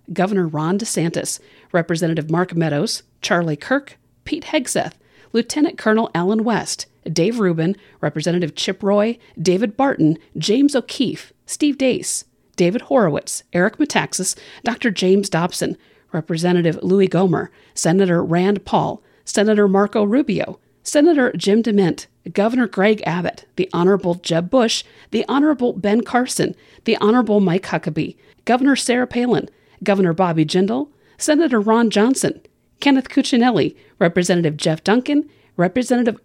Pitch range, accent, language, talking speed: 175-240 Hz, American, English, 125 wpm